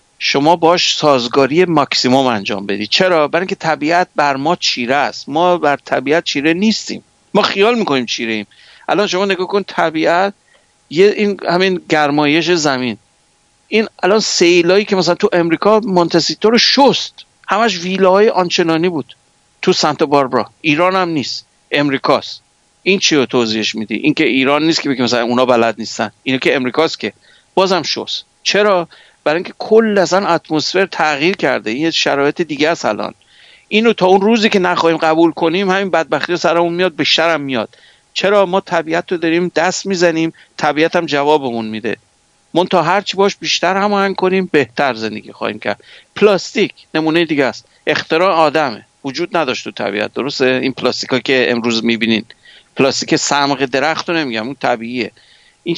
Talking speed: 155 wpm